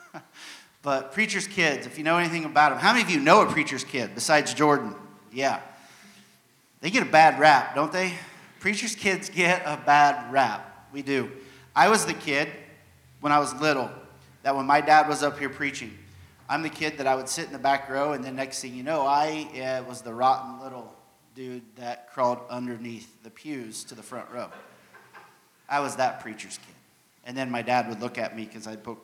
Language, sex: English, male